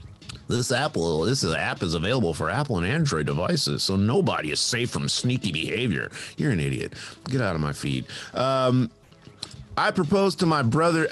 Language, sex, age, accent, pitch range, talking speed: English, male, 30-49, American, 105-145 Hz, 180 wpm